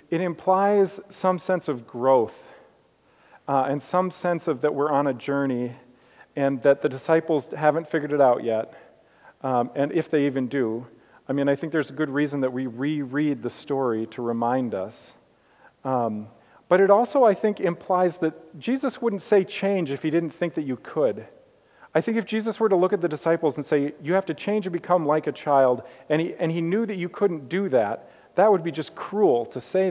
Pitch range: 135-180 Hz